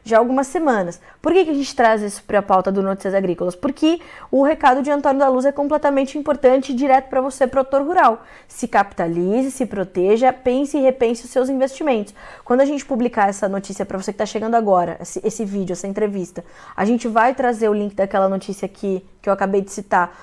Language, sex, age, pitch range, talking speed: Portuguese, female, 20-39, 205-275 Hz, 215 wpm